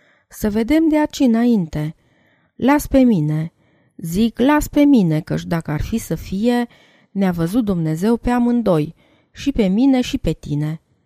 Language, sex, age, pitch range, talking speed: Romanian, female, 30-49, 165-235 Hz, 150 wpm